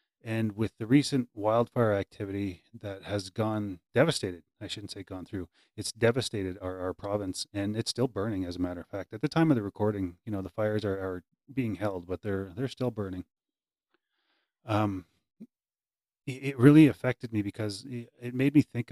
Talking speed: 185 wpm